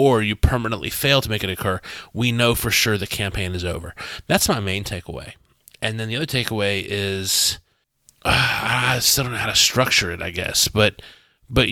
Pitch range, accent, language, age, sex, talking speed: 100-125 Hz, American, English, 30-49, male, 200 wpm